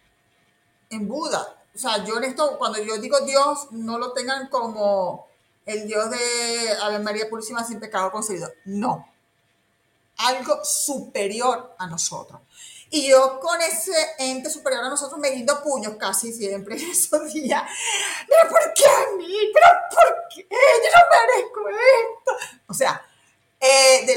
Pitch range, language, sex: 220-315 Hz, Spanish, female